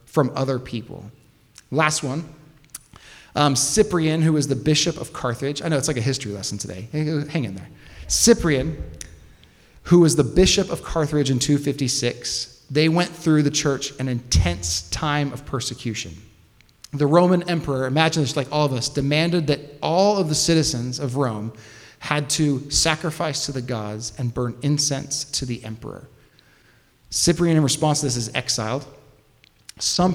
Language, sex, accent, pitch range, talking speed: English, male, American, 110-150 Hz, 160 wpm